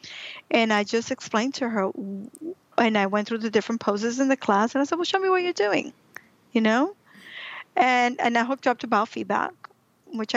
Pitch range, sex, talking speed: 210-250 Hz, female, 215 wpm